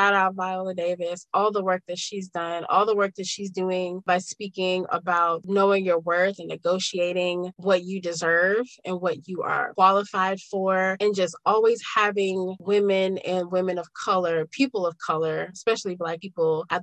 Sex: female